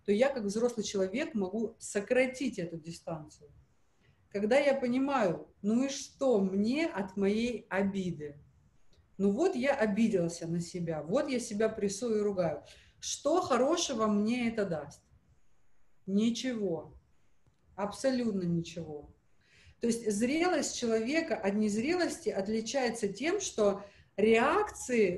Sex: female